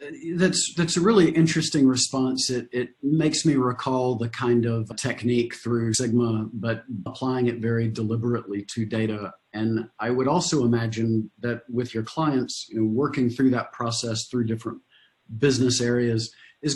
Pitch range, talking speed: 115-140 Hz, 160 wpm